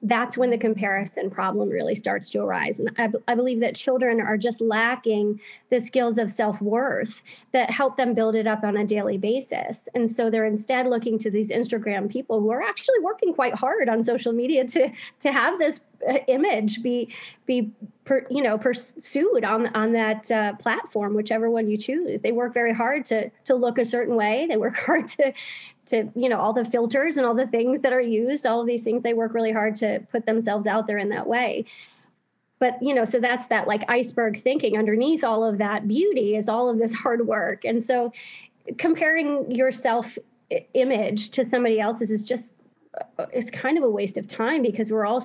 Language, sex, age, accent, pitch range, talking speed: English, female, 30-49, American, 220-255 Hz, 205 wpm